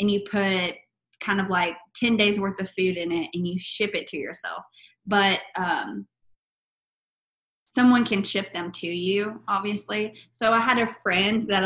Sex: female